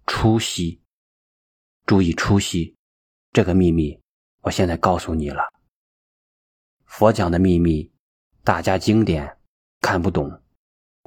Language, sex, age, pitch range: Chinese, male, 30-49, 80-105 Hz